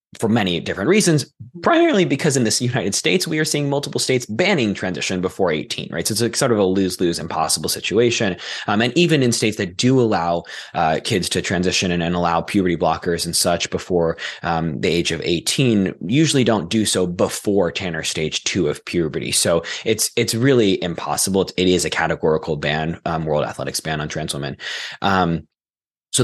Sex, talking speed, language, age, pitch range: male, 190 wpm, English, 20-39, 90-115 Hz